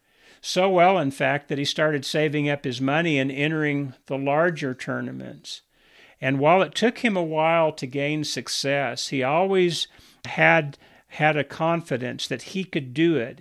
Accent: American